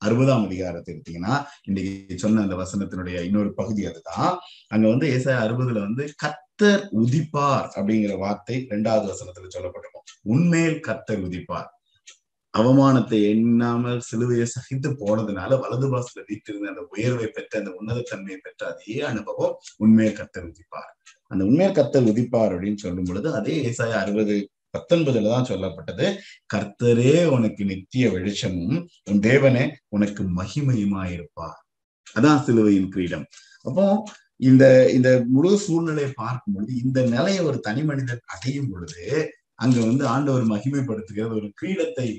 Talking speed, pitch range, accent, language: 110 wpm, 105-140 Hz, native, Tamil